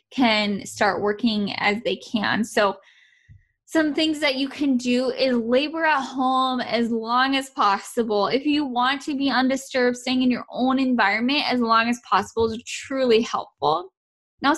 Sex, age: female, 10-29